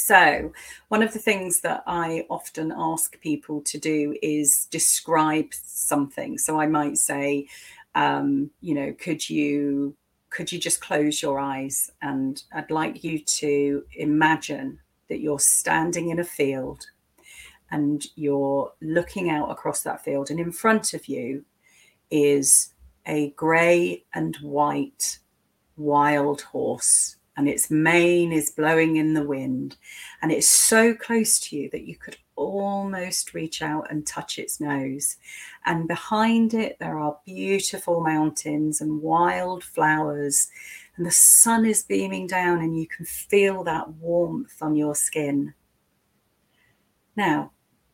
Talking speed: 140 wpm